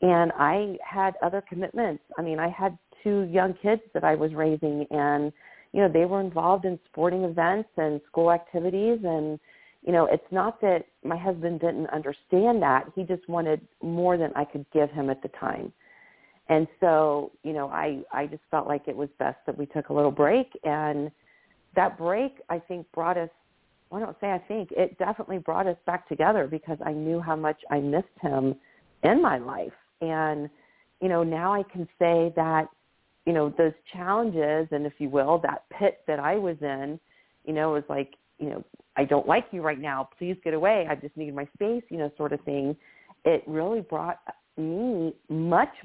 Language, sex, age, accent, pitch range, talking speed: English, female, 40-59, American, 150-180 Hz, 200 wpm